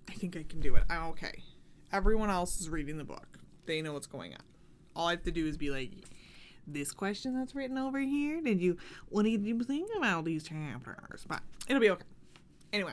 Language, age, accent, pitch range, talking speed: English, 20-39, American, 170-245 Hz, 210 wpm